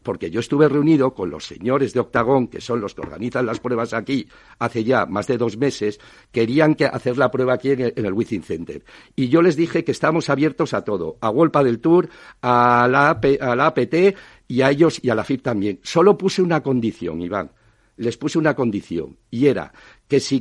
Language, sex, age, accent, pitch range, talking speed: Spanish, male, 60-79, Spanish, 115-155 Hz, 215 wpm